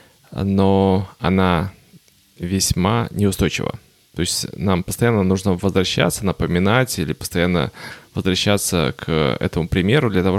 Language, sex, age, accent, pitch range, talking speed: Russian, male, 20-39, native, 90-105 Hz, 110 wpm